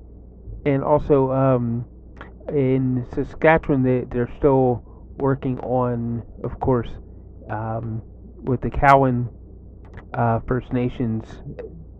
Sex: male